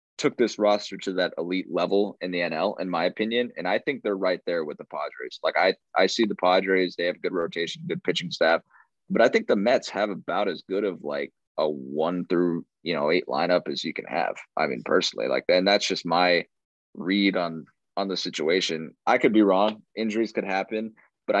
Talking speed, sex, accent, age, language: 220 wpm, male, American, 20-39, English